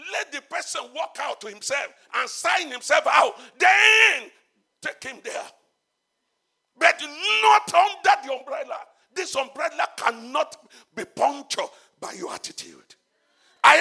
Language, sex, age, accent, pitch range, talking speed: English, male, 50-69, Nigerian, 290-395 Hz, 125 wpm